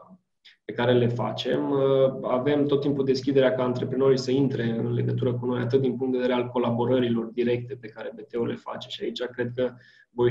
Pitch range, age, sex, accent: 120-140 Hz, 20-39, male, native